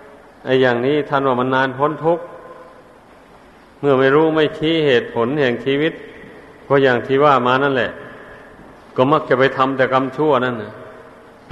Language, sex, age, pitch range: Thai, male, 50-69, 130-145 Hz